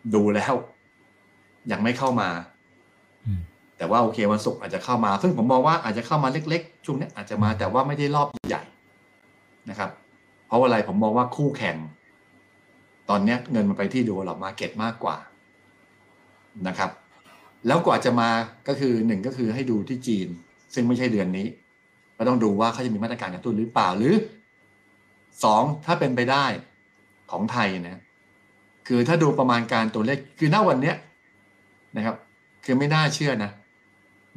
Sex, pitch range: male, 100-125 Hz